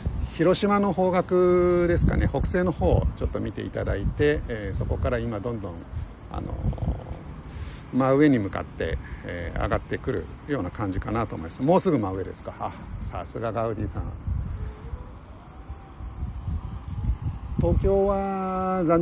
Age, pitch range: 60-79, 95-135 Hz